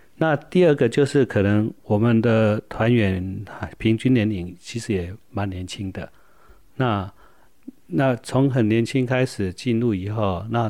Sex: male